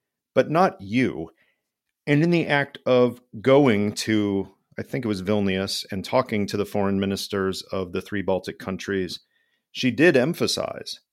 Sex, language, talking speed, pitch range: male, English, 155 wpm, 100-125 Hz